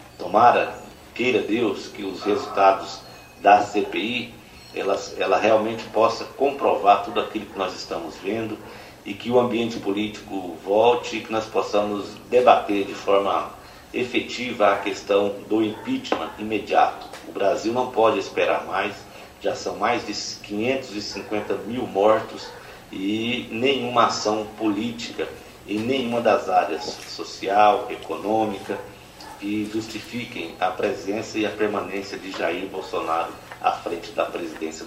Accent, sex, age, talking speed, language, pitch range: Brazilian, male, 50-69, 130 wpm, Portuguese, 105-120 Hz